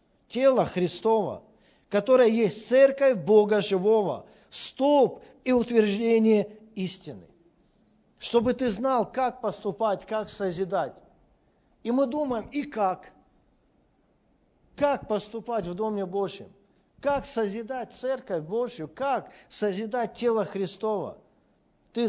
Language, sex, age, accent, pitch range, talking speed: Russian, male, 50-69, native, 195-245 Hz, 100 wpm